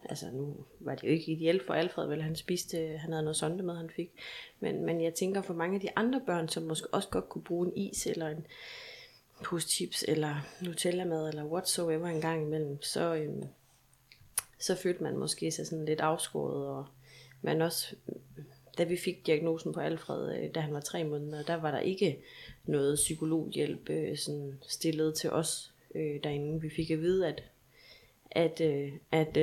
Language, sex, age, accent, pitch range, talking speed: Danish, female, 30-49, native, 150-170 Hz, 190 wpm